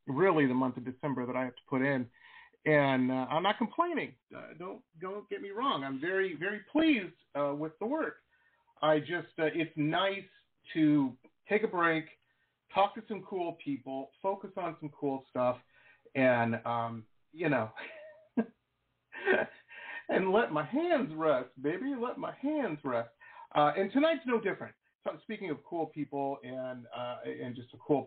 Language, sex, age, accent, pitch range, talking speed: English, male, 40-59, American, 130-195 Hz, 170 wpm